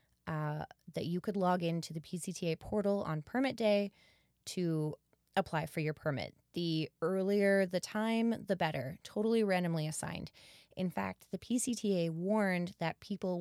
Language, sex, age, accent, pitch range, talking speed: English, female, 20-39, American, 155-200 Hz, 150 wpm